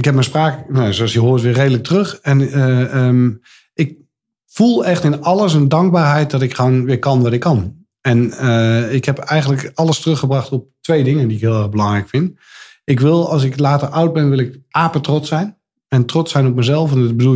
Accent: Dutch